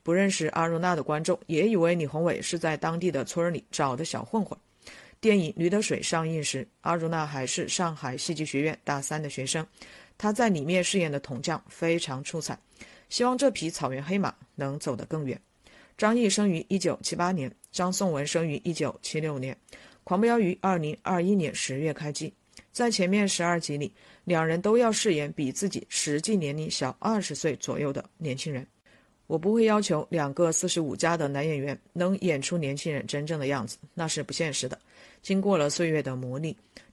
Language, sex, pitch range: Chinese, female, 145-185 Hz